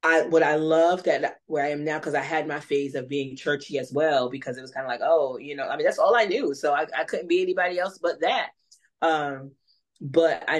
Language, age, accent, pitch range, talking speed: English, 20-39, American, 145-175 Hz, 260 wpm